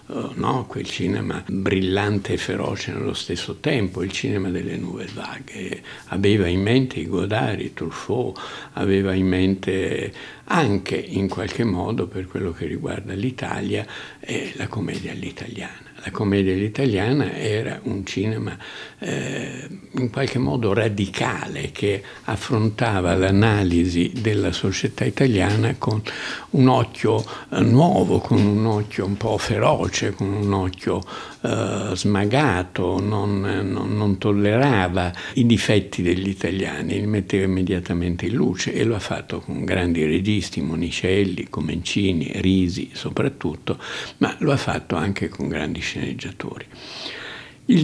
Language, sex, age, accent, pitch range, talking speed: Italian, male, 60-79, native, 95-115 Hz, 125 wpm